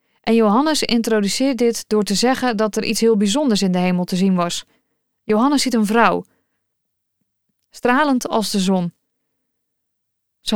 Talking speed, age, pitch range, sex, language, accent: 155 wpm, 20-39, 205-250 Hz, female, Dutch, Dutch